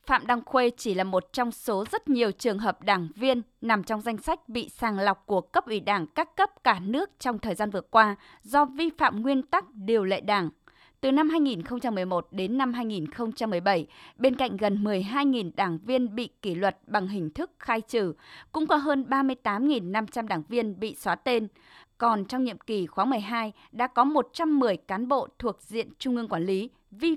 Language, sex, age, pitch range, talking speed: Vietnamese, female, 20-39, 200-255 Hz, 195 wpm